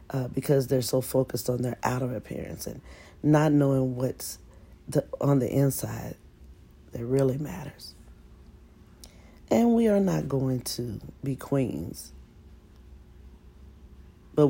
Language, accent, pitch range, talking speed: English, American, 90-145 Hz, 120 wpm